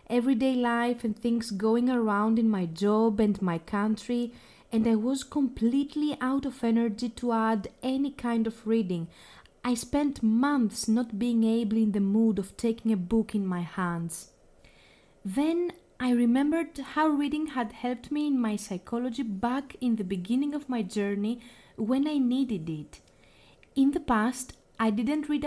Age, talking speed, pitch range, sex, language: 20-39, 165 wpm, 205-265 Hz, female, Greek